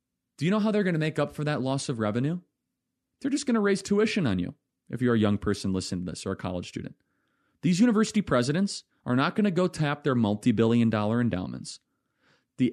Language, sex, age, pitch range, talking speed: English, male, 30-49, 105-140 Hz, 225 wpm